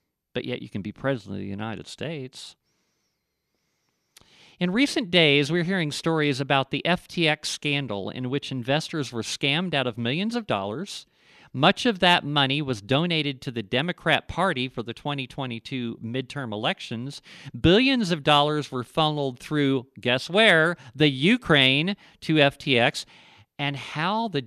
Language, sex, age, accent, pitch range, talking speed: English, male, 50-69, American, 125-165 Hz, 145 wpm